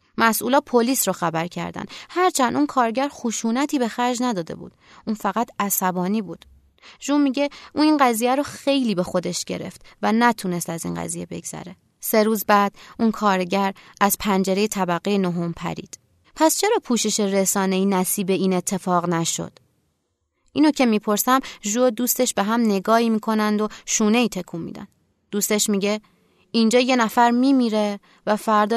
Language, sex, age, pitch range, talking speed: Persian, female, 20-39, 195-255 Hz, 150 wpm